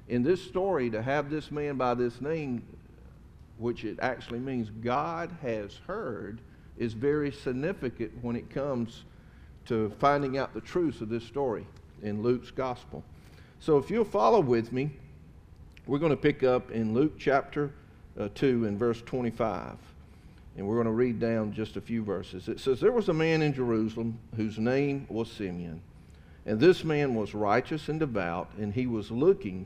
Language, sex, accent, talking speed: English, male, American, 175 wpm